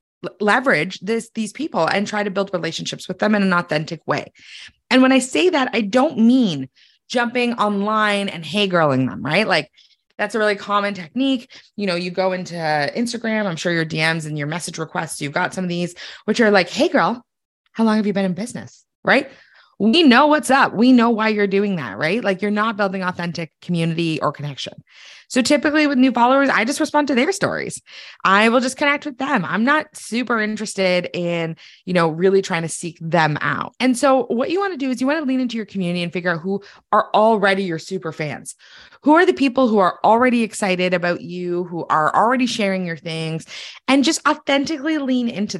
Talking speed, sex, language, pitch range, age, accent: 215 wpm, female, English, 180-255 Hz, 20-39, American